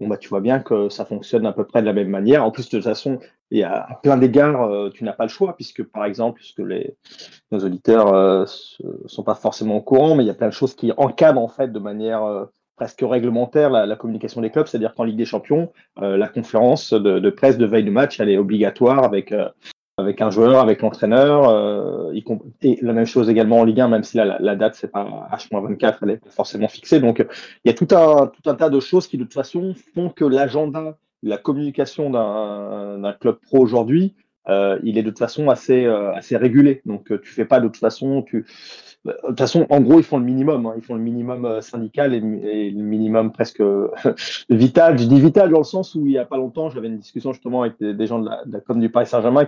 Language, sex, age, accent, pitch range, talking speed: French, male, 30-49, French, 110-140 Hz, 245 wpm